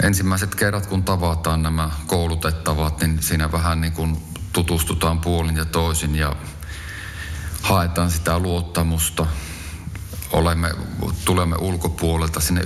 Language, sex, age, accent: Finnish, male, 30-49, native